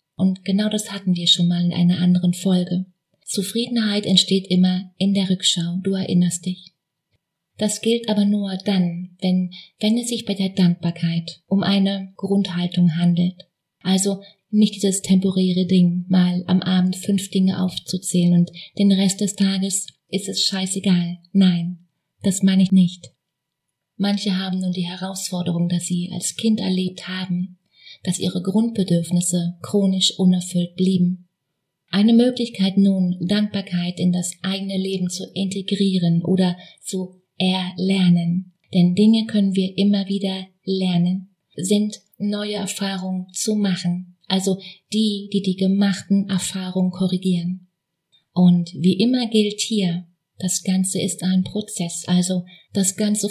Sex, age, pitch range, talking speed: female, 20-39, 180-195 Hz, 135 wpm